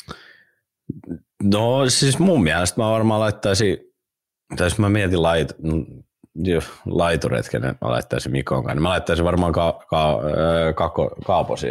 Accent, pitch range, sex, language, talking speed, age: native, 65-85 Hz, male, Finnish, 115 wpm, 30-49